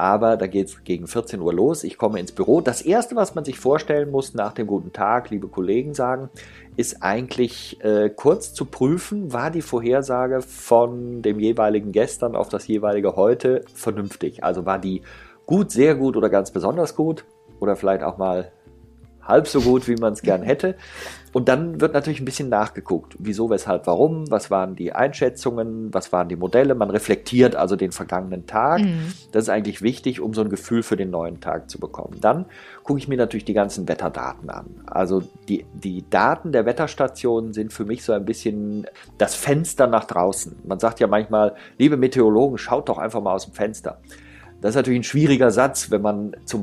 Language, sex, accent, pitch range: German, male, German, 100-135 Hz